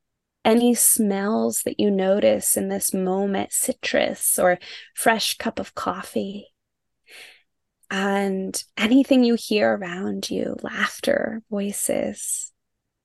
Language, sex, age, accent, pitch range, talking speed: English, female, 20-39, American, 195-240 Hz, 100 wpm